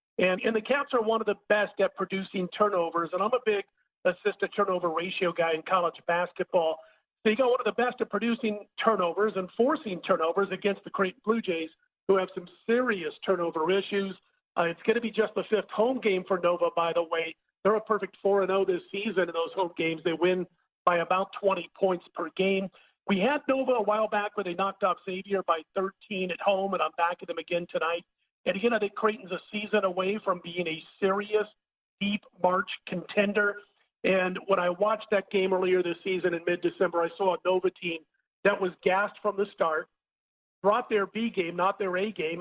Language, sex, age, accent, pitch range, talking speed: English, male, 40-59, American, 175-210 Hz, 210 wpm